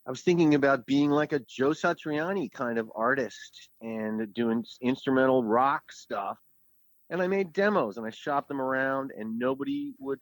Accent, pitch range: American, 120-165 Hz